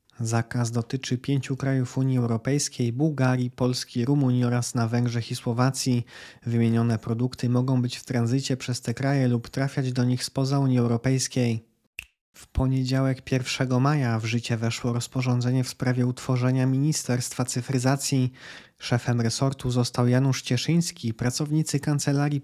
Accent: native